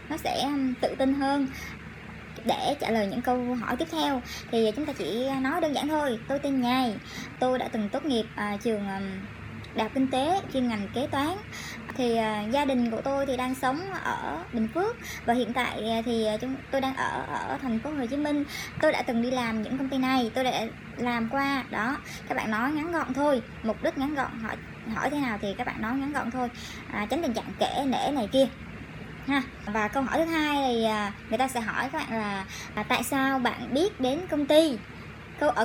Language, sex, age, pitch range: Vietnamese, male, 10-29, 235-280 Hz